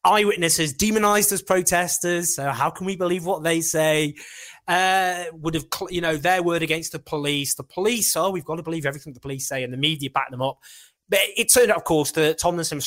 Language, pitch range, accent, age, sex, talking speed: English, 140-195 Hz, British, 20-39, male, 230 wpm